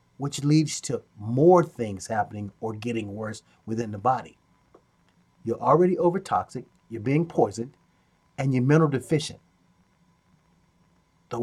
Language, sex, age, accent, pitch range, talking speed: English, male, 30-49, American, 120-175 Hz, 125 wpm